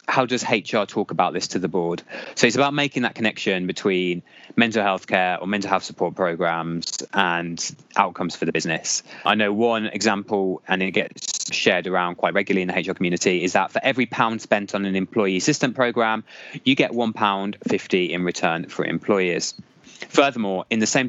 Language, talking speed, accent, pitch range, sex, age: English, 190 wpm, British, 95-115 Hz, male, 20-39